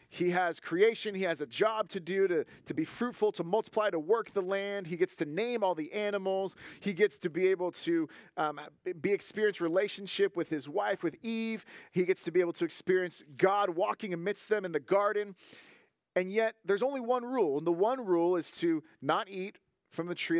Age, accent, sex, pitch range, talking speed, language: 30-49, American, male, 160-210 Hz, 210 wpm, English